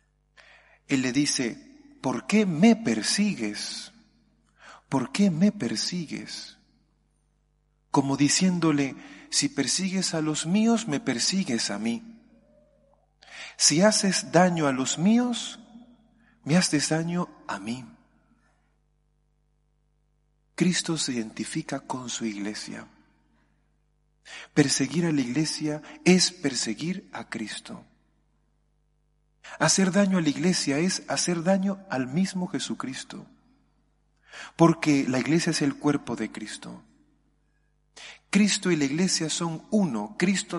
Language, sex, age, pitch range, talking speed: Spanish, male, 40-59, 125-180 Hz, 110 wpm